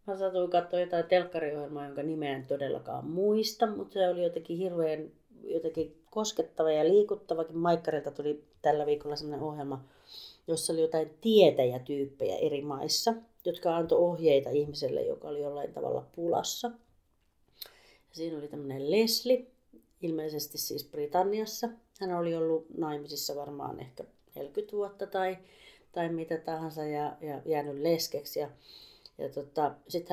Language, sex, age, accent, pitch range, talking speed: Finnish, female, 30-49, native, 145-185 Hz, 135 wpm